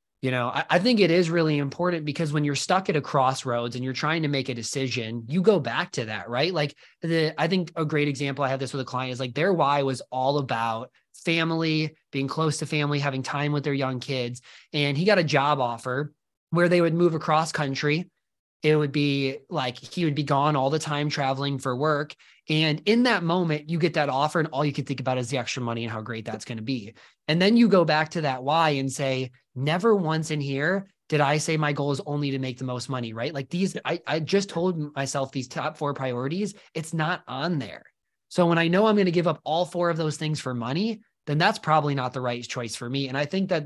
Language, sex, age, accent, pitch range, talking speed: English, male, 20-39, American, 135-165 Hz, 250 wpm